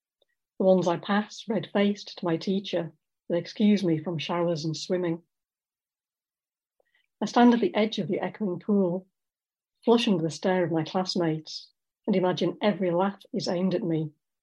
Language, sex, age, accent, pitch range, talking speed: English, female, 60-79, British, 170-200 Hz, 160 wpm